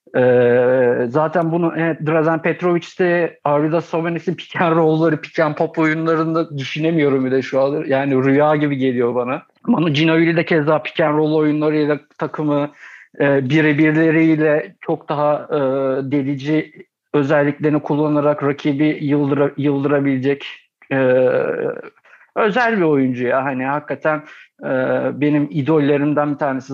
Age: 50-69